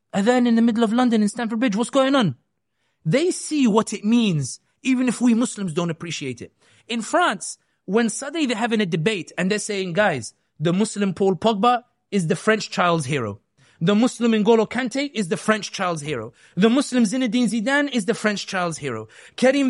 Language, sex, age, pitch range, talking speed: English, male, 30-49, 165-230 Hz, 200 wpm